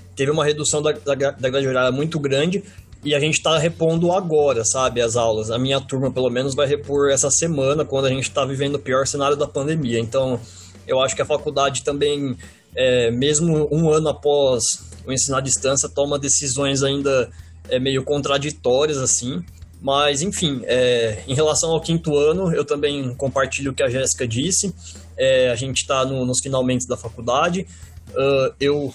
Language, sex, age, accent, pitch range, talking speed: Portuguese, male, 20-39, Brazilian, 125-145 Hz, 180 wpm